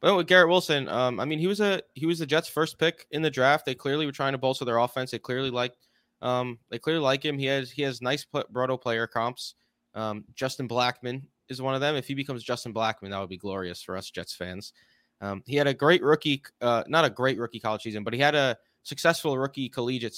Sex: male